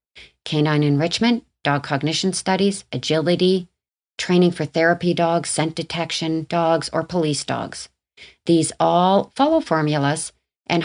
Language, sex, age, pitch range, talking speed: English, female, 40-59, 150-185 Hz, 115 wpm